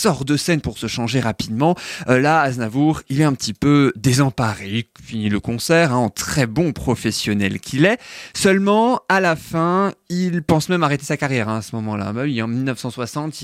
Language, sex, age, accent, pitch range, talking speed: French, male, 20-39, French, 120-185 Hz, 195 wpm